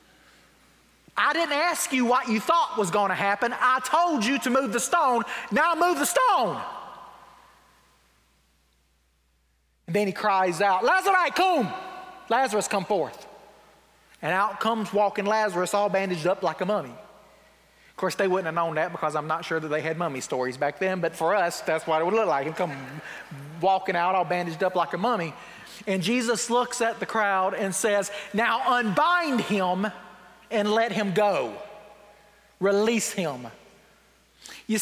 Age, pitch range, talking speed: 30-49, 190-270 Hz, 170 wpm